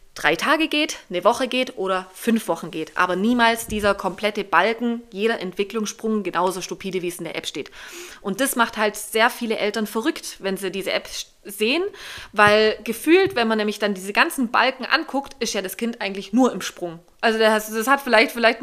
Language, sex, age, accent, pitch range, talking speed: German, female, 20-39, German, 195-245 Hz, 205 wpm